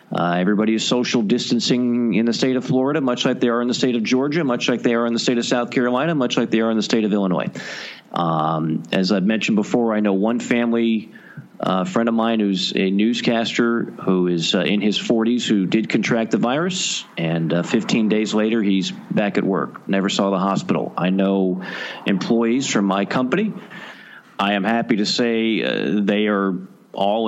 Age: 40-59